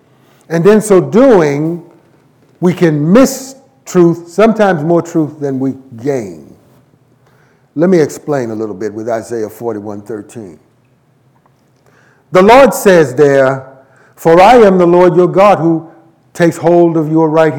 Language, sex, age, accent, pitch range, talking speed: English, male, 50-69, American, 130-185 Hz, 135 wpm